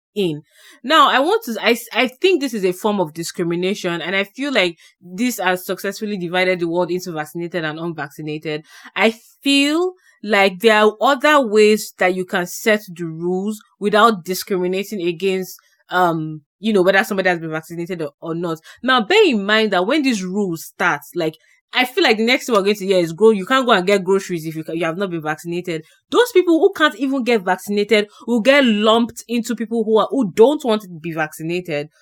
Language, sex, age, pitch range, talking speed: English, female, 20-39, 180-240 Hz, 210 wpm